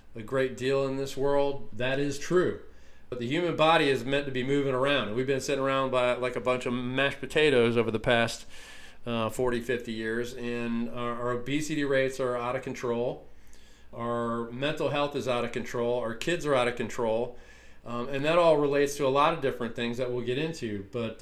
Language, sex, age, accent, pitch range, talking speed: English, male, 40-59, American, 120-140 Hz, 210 wpm